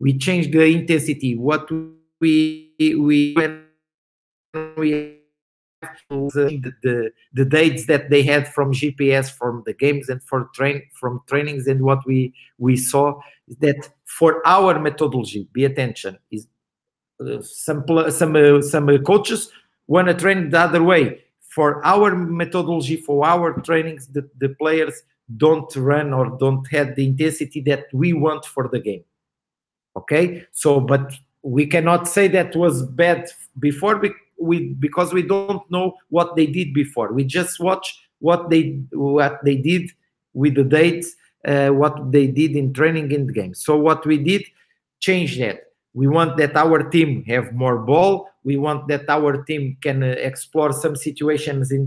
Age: 50-69